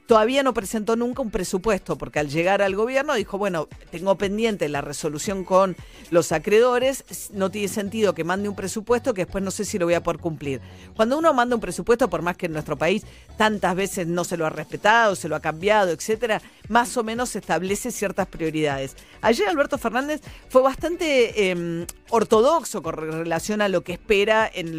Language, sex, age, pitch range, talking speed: Spanish, female, 50-69, 165-215 Hz, 195 wpm